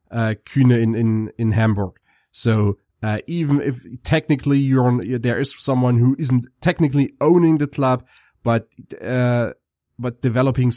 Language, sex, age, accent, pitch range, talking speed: English, male, 30-49, German, 105-130 Hz, 145 wpm